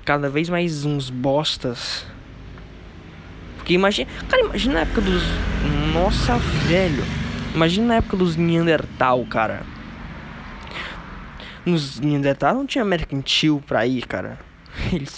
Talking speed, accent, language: 115 wpm, Brazilian, Portuguese